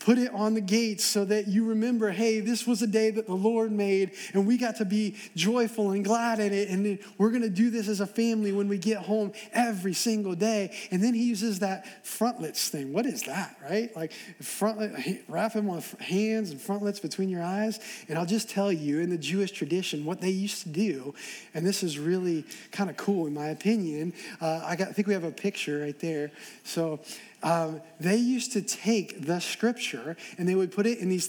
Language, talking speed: English, 220 wpm